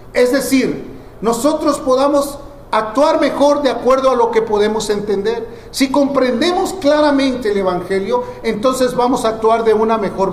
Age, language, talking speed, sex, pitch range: 40-59, Spanish, 145 wpm, male, 200-265 Hz